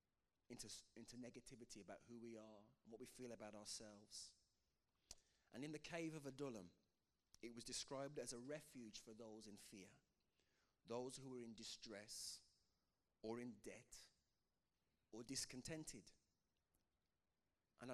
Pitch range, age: 110-145 Hz, 30-49